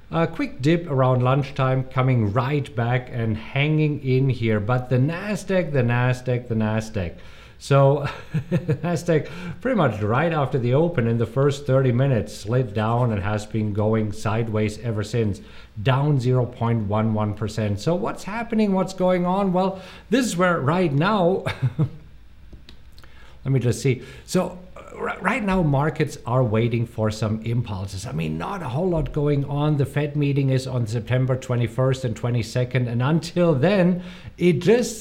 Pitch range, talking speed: 115-160 Hz, 155 wpm